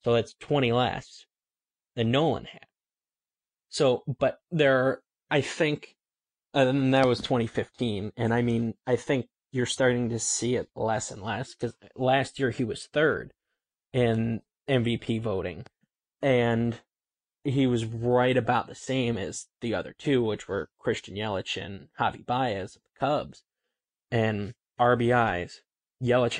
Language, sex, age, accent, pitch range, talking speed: English, male, 20-39, American, 115-125 Hz, 140 wpm